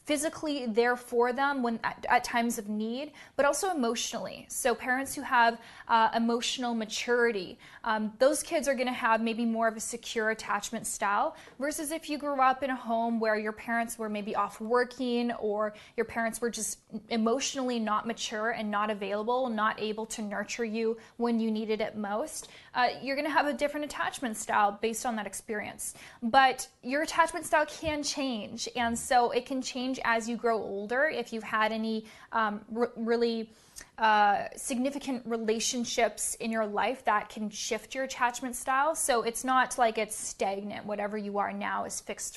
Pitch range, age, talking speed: 220-260 Hz, 20-39, 180 wpm